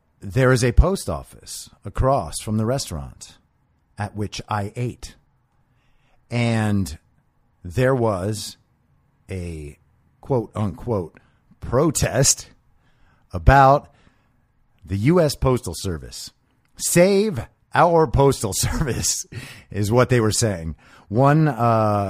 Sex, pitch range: male, 100-130 Hz